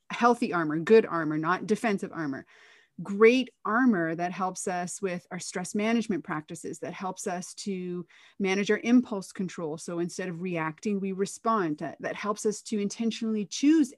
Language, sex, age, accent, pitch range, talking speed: English, female, 30-49, American, 180-235 Hz, 165 wpm